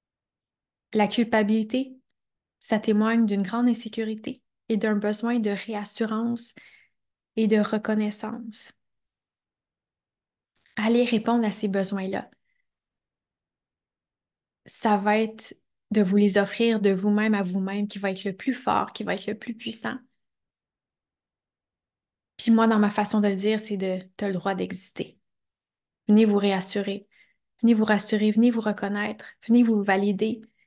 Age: 20-39